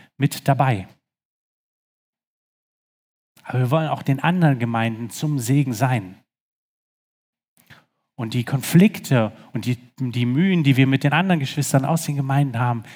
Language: German